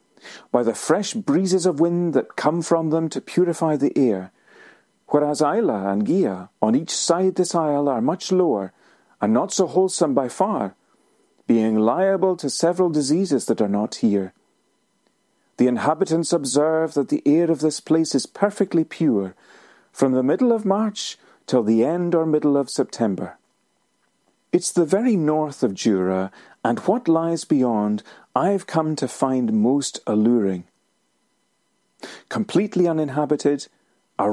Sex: male